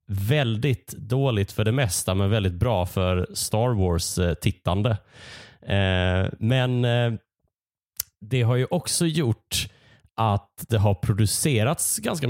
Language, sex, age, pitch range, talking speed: Swedish, male, 30-49, 95-120 Hz, 105 wpm